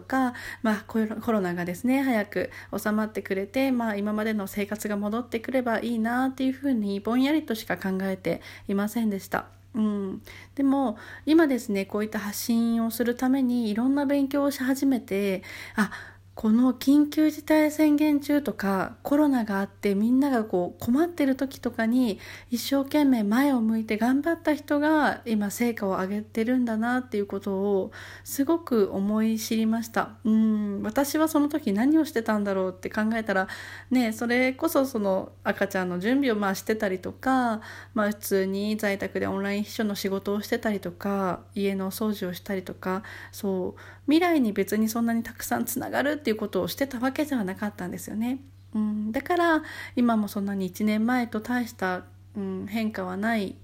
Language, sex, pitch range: Japanese, female, 200-260 Hz